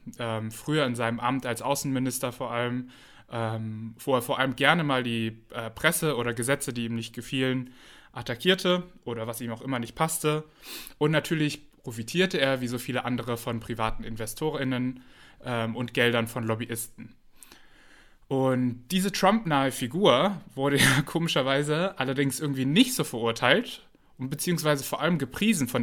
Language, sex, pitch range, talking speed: German, male, 115-145 Hz, 145 wpm